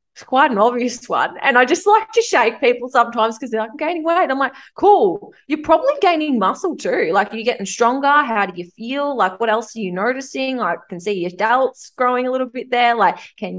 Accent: Australian